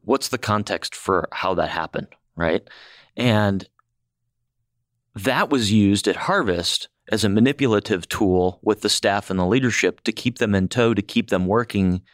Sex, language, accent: male, English, American